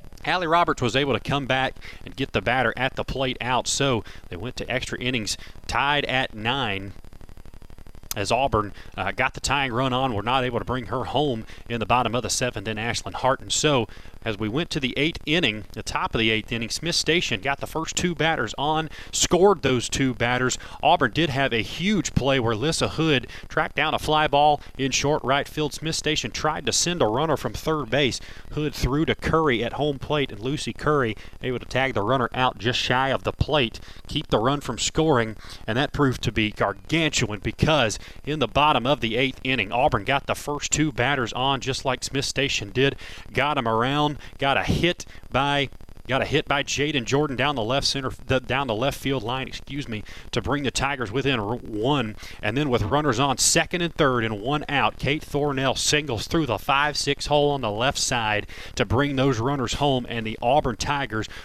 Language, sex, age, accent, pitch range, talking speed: English, male, 30-49, American, 110-140 Hz, 210 wpm